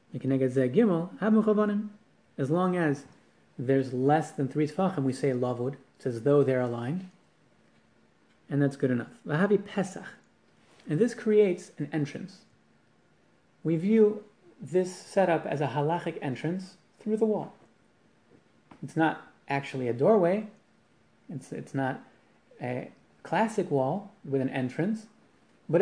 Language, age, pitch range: English, 30-49, 135-190 Hz